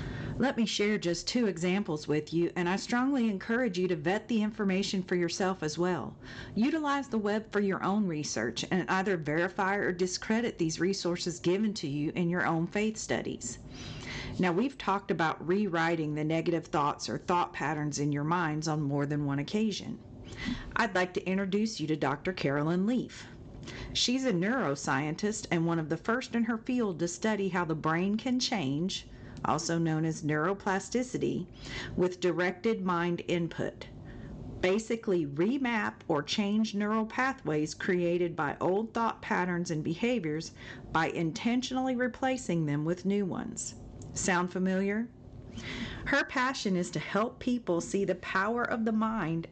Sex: female